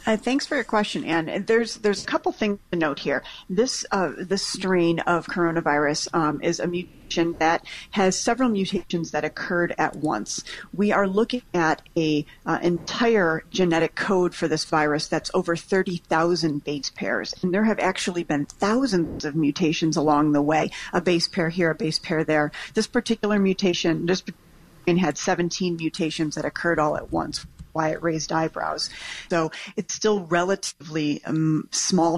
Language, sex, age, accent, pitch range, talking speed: English, female, 40-59, American, 155-190 Hz, 170 wpm